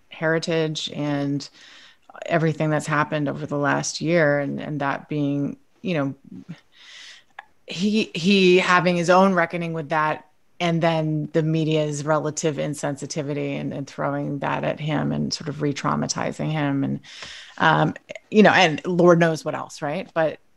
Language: English